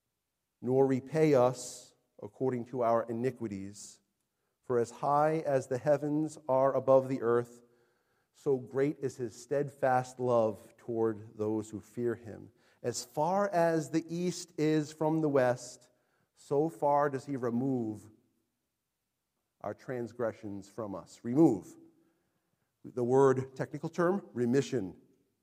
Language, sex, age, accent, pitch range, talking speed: English, male, 40-59, American, 125-180 Hz, 125 wpm